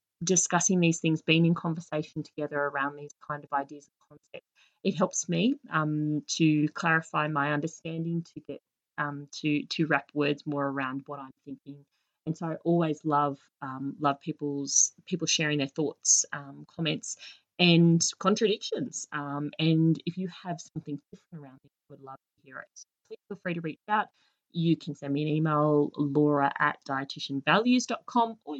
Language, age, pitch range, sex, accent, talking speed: English, 30-49, 145-195 Hz, female, Australian, 170 wpm